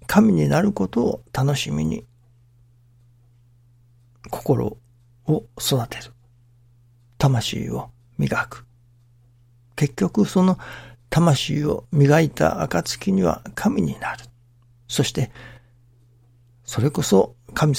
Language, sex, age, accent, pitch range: Japanese, male, 60-79, native, 120-135 Hz